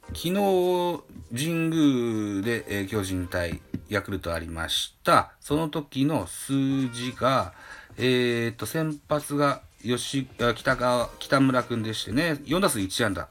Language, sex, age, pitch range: Japanese, male, 40-59, 90-140 Hz